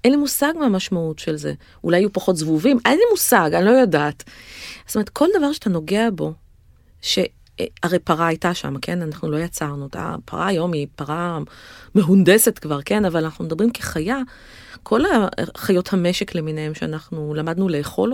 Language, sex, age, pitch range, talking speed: Hebrew, female, 30-49, 170-230 Hz, 165 wpm